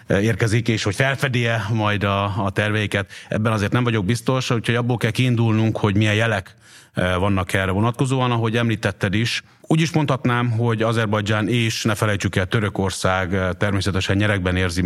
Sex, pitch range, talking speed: male, 95-115 Hz, 155 wpm